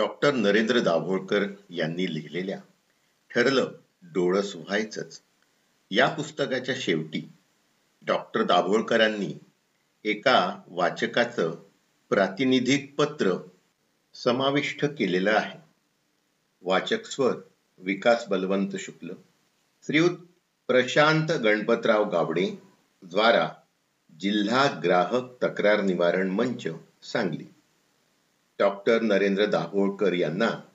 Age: 50-69